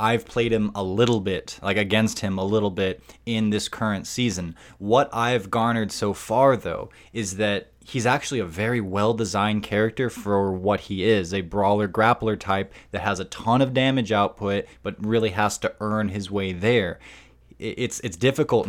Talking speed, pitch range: 180 wpm, 100-115 Hz